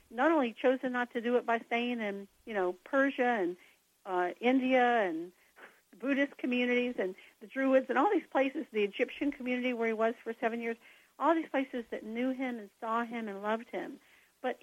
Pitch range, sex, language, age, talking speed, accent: 205-255 Hz, female, English, 60-79, 195 wpm, American